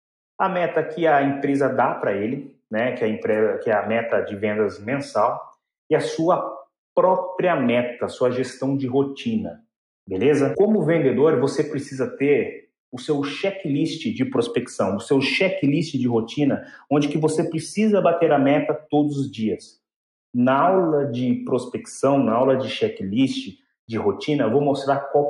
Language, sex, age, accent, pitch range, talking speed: Portuguese, male, 40-59, Brazilian, 130-165 Hz, 160 wpm